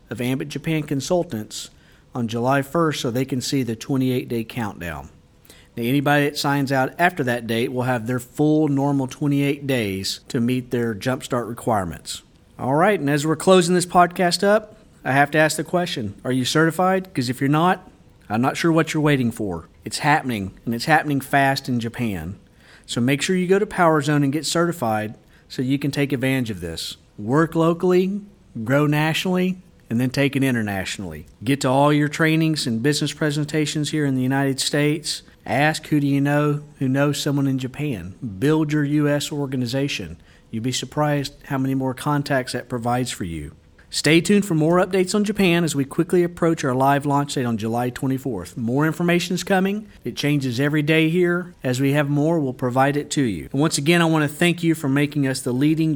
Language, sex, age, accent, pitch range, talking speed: English, male, 40-59, American, 125-155 Hz, 195 wpm